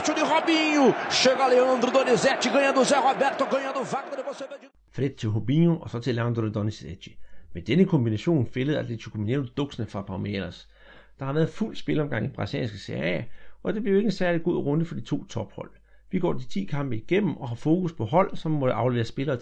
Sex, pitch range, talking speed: male, 115-175 Hz, 160 wpm